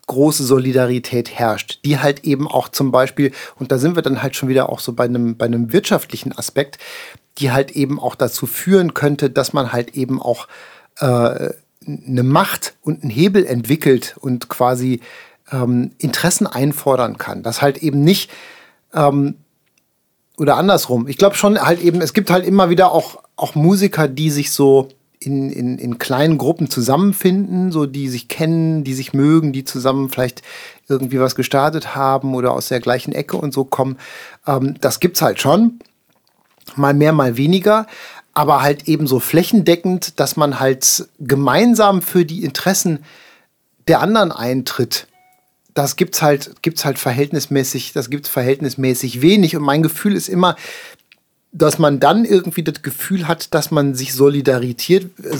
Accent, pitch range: German, 135-170 Hz